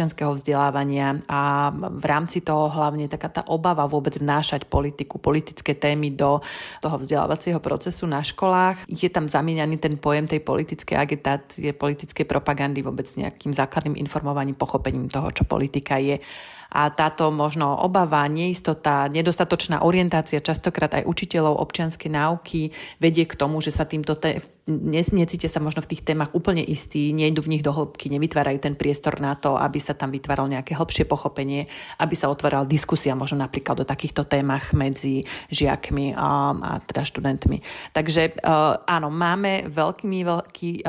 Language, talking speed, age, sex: Slovak, 150 wpm, 30-49, female